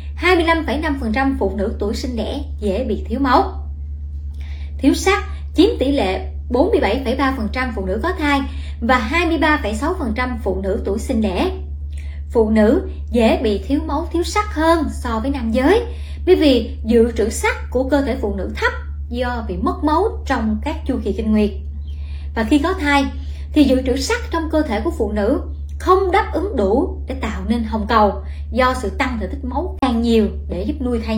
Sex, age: male, 20-39